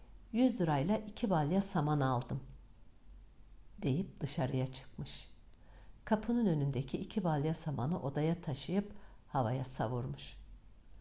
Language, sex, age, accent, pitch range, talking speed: Turkish, female, 60-79, native, 130-190 Hz, 100 wpm